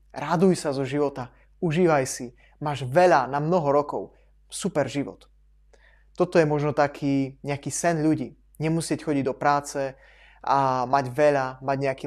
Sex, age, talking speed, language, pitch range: male, 20-39, 145 wpm, Slovak, 130-155 Hz